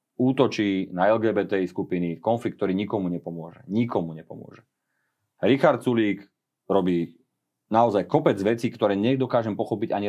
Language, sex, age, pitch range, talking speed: Slovak, male, 30-49, 90-110 Hz, 120 wpm